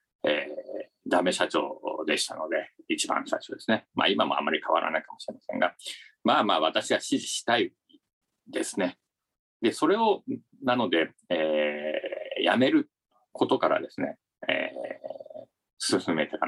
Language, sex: Japanese, male